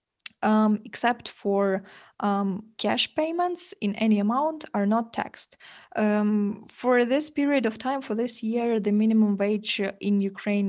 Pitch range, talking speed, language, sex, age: 200-230 Hz, 145 wpm, Ukrainian, female, 20-39